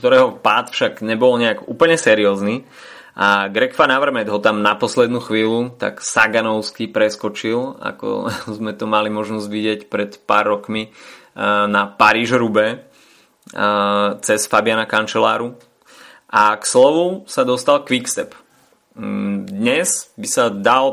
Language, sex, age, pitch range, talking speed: Slovak, male, 20-39, 105-125 Hz, 120 wpm